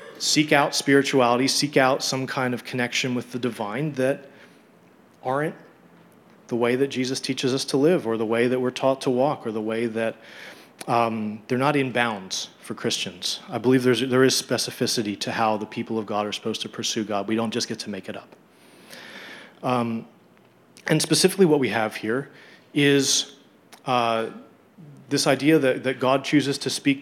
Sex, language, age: male, English, 30-49